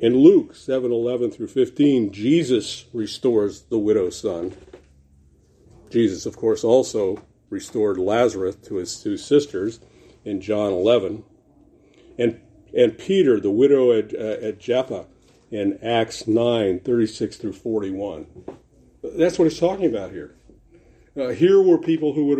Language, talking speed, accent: English, 135 wpm, American